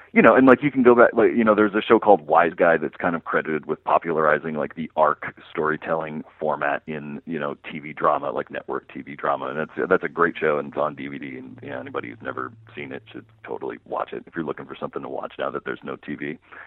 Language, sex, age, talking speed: English, male, 40-59, 250 wpm